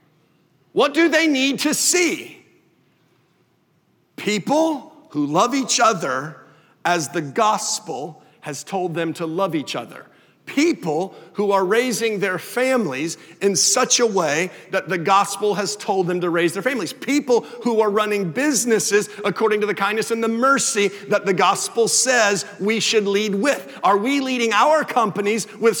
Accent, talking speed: American, 155 wpm